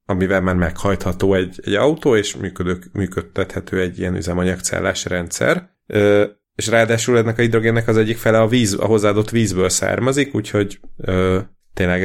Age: 30-49